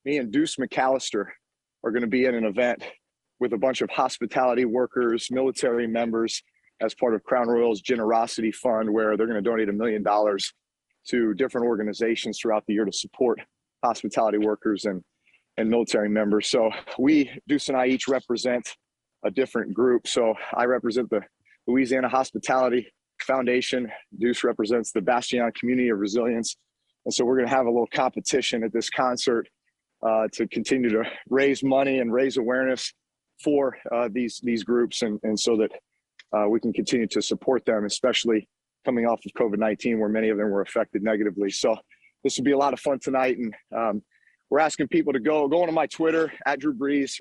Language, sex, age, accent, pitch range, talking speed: English, male, 30-49, American, 110-130 Hz, 180 wpm